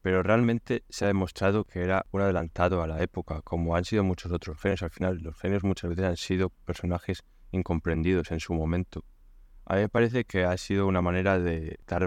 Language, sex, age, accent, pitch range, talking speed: Spanish, male, 20-39, Spanish, 85-100 Hz, 210 wpm